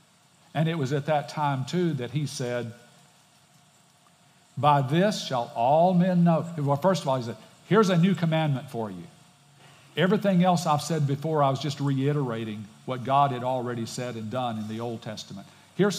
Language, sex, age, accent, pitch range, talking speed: English, male, 50-69, American, 130-170 Hz, 185 wpm